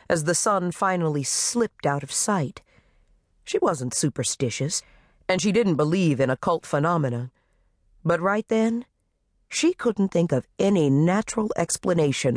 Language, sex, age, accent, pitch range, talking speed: English, female, 50-69, American, 130-195 Hz, 135 wpm